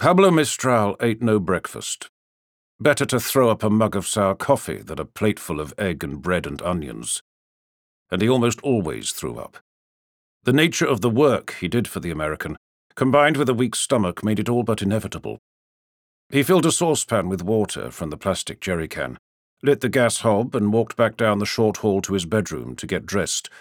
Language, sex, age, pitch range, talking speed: English, male, 50-69, 90-130 Hz, 195 wpm